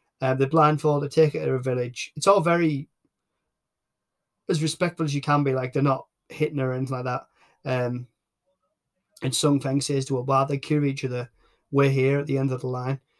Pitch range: 130-150 Hz